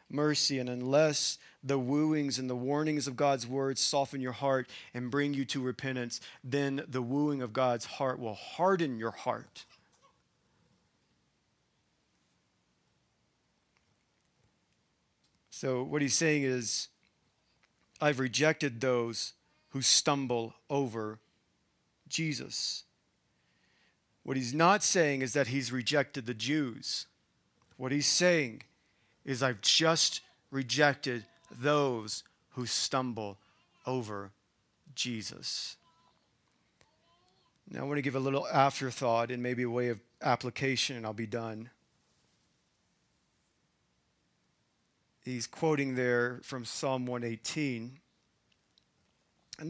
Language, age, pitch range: English, 40-59, 120-145 Hz